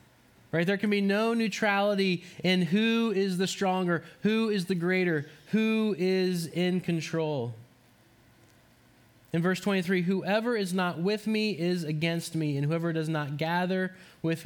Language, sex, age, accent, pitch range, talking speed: English, male, 20-39, American, 130-185 Hz, 150 wpm